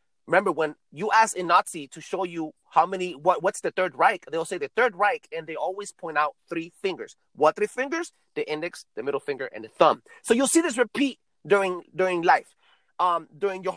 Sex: male